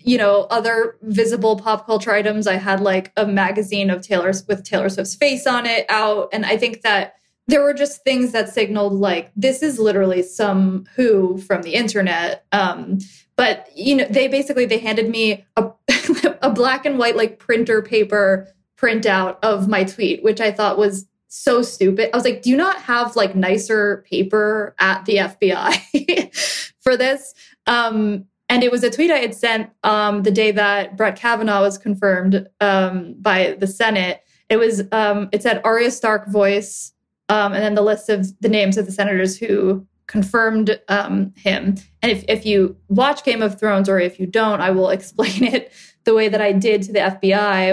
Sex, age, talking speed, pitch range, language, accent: female, 20-39, 190 wpm, 195-230 Hz, English, American